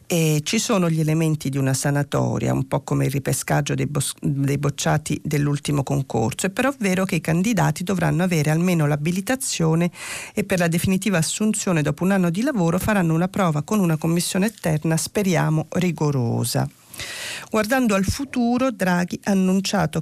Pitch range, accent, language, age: 155-195 Hz, native, Italian, 40-59